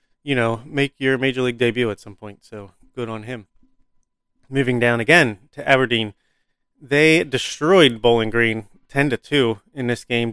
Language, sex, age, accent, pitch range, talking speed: English, male, 30-49, American, 115-135 Hz, 165 wpm